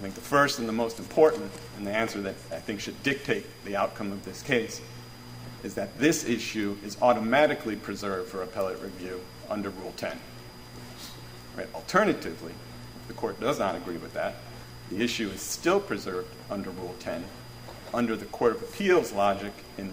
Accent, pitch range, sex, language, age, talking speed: American, 95-120 Hz, male, English, 50-69, 180 wpm